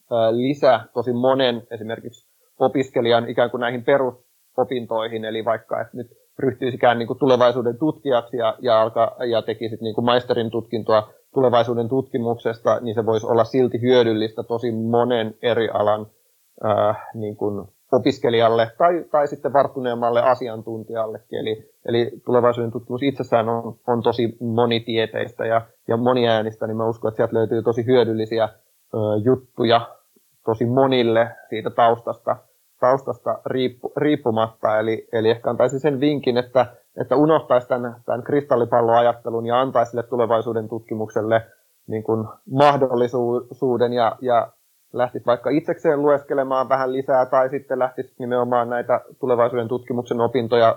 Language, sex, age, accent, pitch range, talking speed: Finnish, male, 30-49, native, 115-130 Hz, 115 wpm